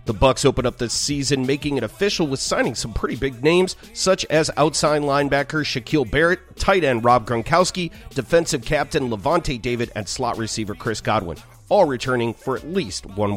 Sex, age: male, 40-59